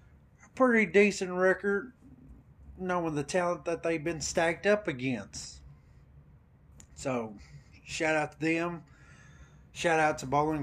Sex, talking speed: male, 120 wpm